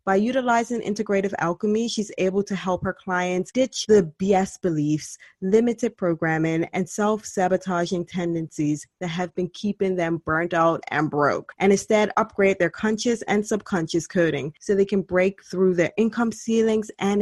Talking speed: 155 wpm